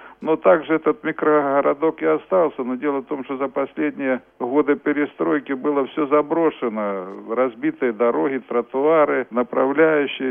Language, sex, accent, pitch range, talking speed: Russian, male, native, 125-150 Hz, 130 wpm